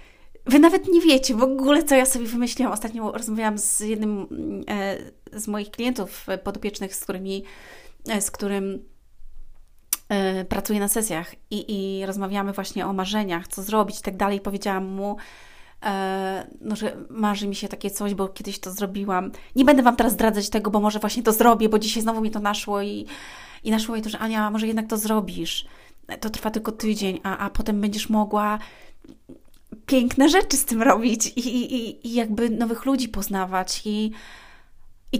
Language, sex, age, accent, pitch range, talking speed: Polish, female, 30-49, native, 195-235 Hz, 170 wpm